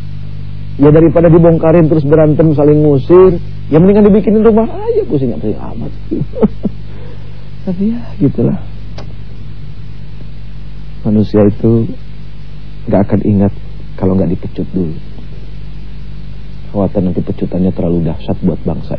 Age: 40-59